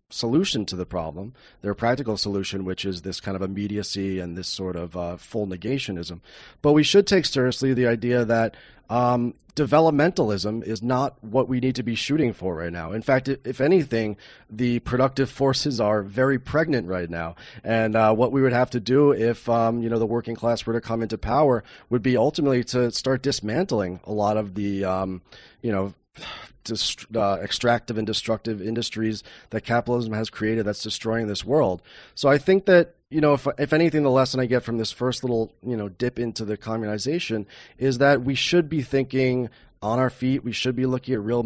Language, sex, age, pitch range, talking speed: English, male, 30-49, 105-130 Hz, 200 wpm